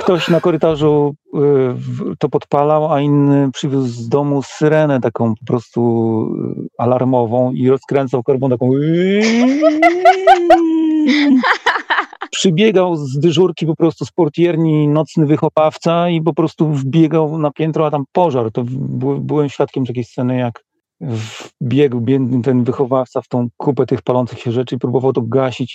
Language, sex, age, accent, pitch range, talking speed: Polish, male, 40-59, native, 115-150 Hz, 145 wpm